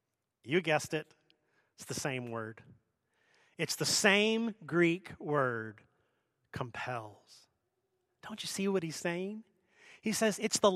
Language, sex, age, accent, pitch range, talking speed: English, male, 30-49, American, 175-230 Hz, 130 wpm